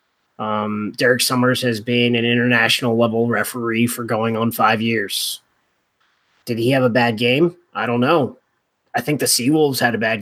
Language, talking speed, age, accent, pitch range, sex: English, 170 wpm, 20-39, American, 120-155 Hz, male